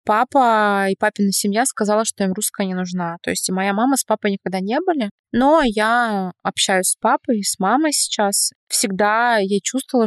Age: 20-39